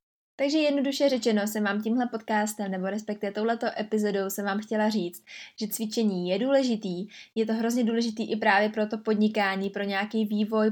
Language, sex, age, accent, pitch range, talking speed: Czech, female, 20-39, native, 200-235 Hz, 175 wpm